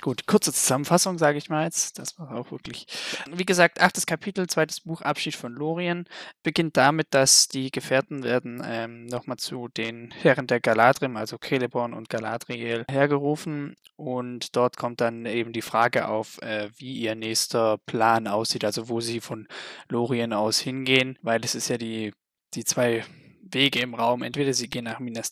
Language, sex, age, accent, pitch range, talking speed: German, male, 20-39, German, 120-145 Hz, 175 wpm